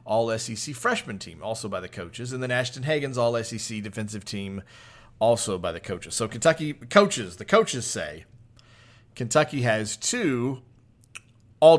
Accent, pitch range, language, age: American, 105-120 Hz, English, 40-59